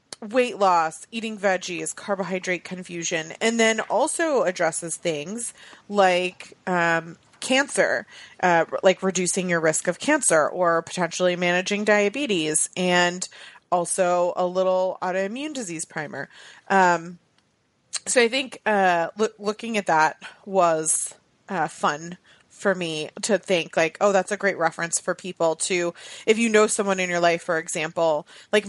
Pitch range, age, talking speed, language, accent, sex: 165-205 Hz, 30-49, 140 wpm, English, American, female